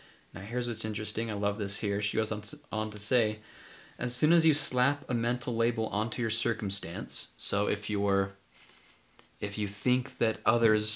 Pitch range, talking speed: 105-125 Hz, 180 wpm